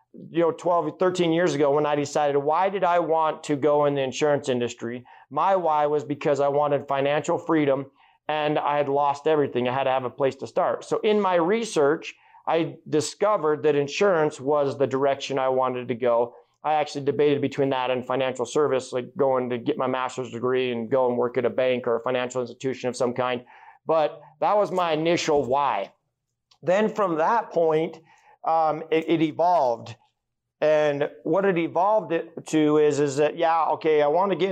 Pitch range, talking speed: 135-160 Hz, 195 wpm